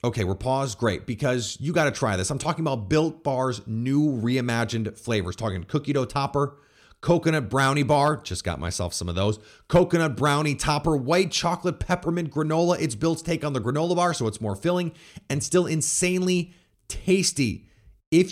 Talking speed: 175 wpm